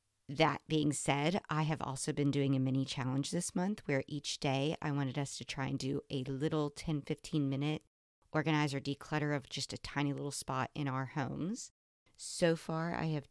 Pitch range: 140-160 Hz